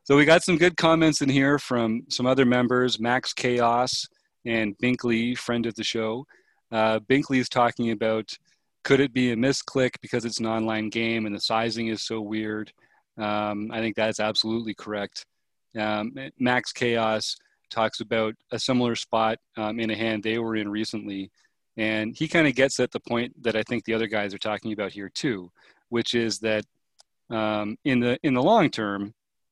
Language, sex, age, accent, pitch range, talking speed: English, male, 30-49, American, 110-125 Hz, 185 wpm